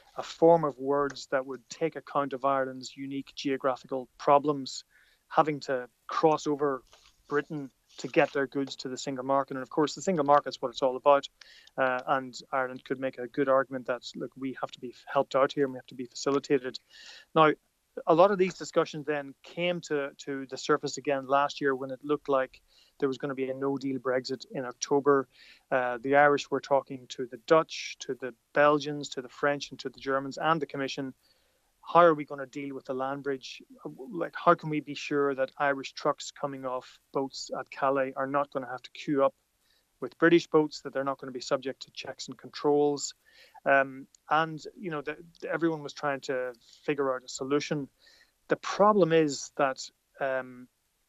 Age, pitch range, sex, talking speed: 30-49, 130-150 Hz, male, 205 wpm